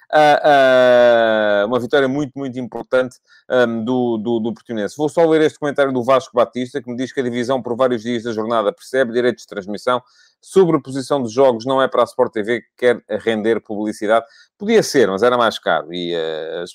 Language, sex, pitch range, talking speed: Portuguese, male, 110-145 Hz, 190 wpm